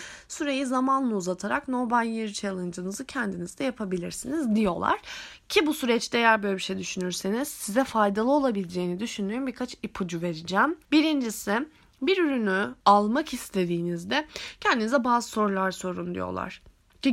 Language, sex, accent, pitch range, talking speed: Turkish, female, native, 195-260 Hz, 130 wpm